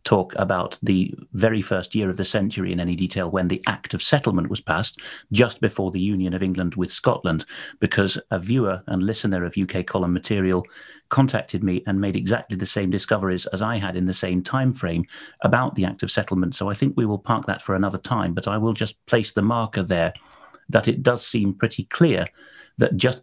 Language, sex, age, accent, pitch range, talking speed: English, male, 40-59, British, 95-110 Hz, 215 wpm